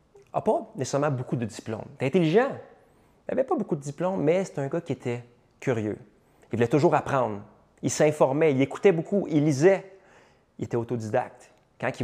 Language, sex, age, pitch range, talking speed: French, male, 30-49, 115-155 Hz, 195 wpm